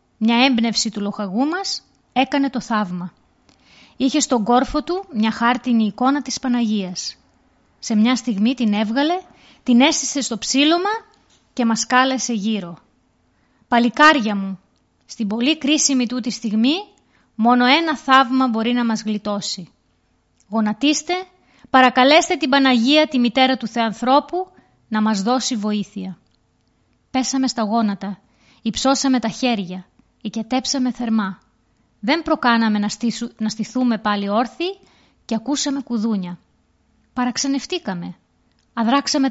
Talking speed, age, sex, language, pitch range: 120 wpm, 20-39, female, Greek, 215-275 Hz